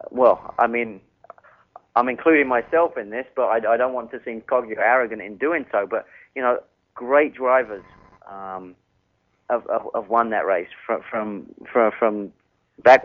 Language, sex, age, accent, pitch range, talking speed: English, male, 30-49, British, 105-130 Hz, 165 wpm